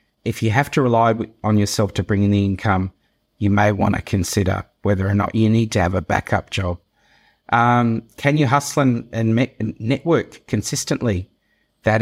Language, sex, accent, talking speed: English, male, Australian, 180 wpm